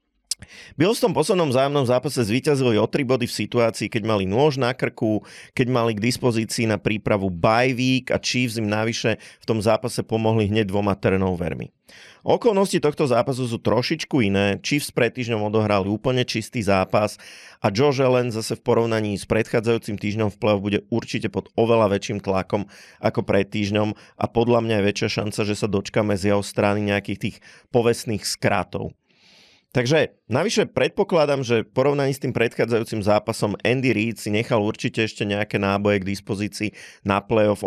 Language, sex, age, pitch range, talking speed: Slovak, male, 30-49, 100-120 Hz, 165 wpm